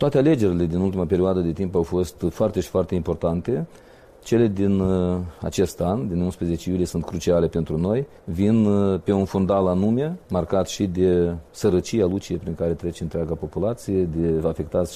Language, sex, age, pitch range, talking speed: Romanian, male, 40-59, 85-105 Hz, 165 wpm